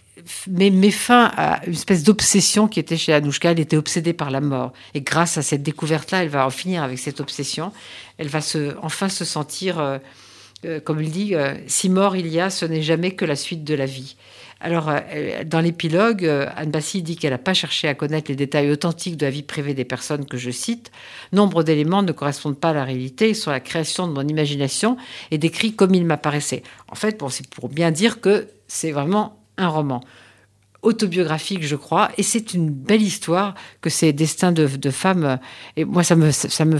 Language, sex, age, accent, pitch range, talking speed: French, female, 50-69, French, 145-185 Hz, 215 wpm